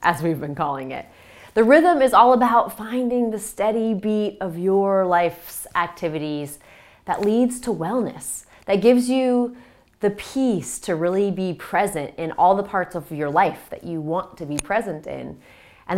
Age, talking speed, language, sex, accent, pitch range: 20-39, 175 wpm, English, female, American, 160-235 Hz